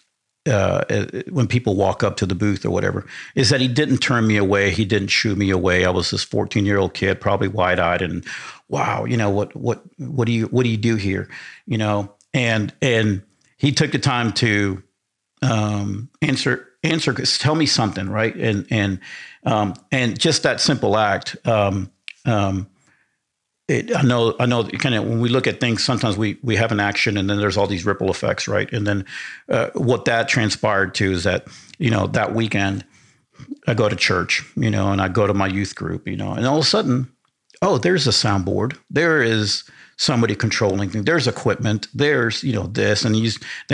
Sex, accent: male, American